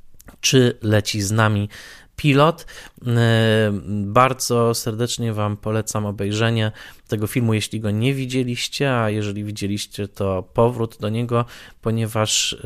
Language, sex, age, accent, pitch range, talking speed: Polish, male, 20-39, native, 105-125 Hz, 115 wpm